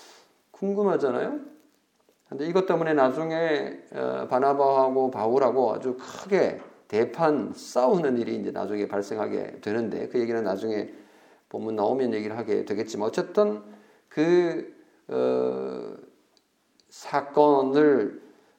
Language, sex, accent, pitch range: Korean, male, native, 125-185 Hz